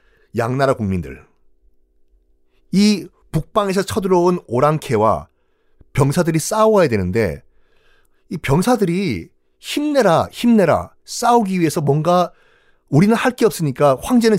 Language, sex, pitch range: Korean, male, 115-175 Hz